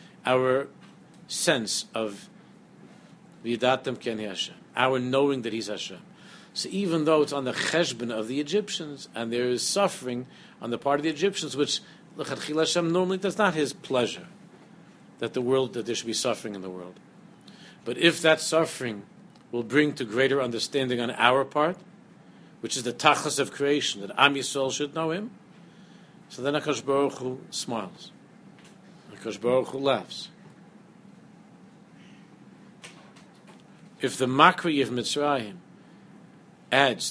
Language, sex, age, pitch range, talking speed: English, male, 50-69, 130-190 Hz, 135 wpm